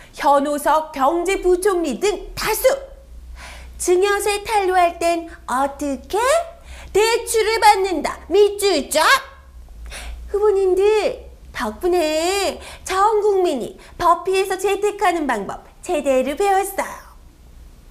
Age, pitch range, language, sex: 30-49, 310-410 Hz, Korean, female